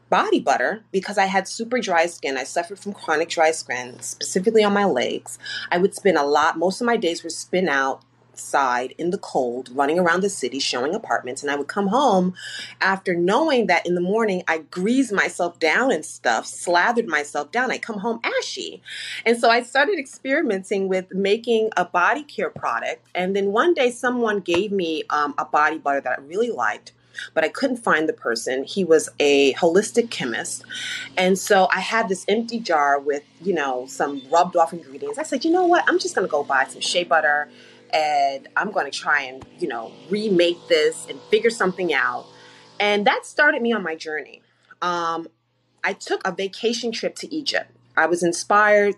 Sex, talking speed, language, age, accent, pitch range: female, 195 wpm, English, 30-49, American, 155-220 Hz